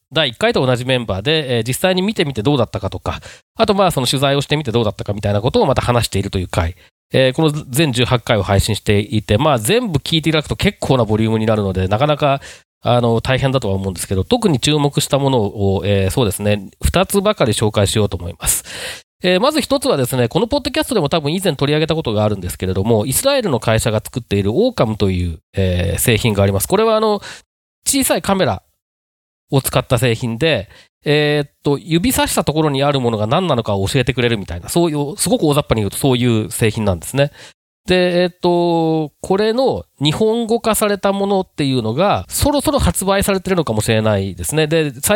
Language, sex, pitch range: Japanese, male, 105-160 Hz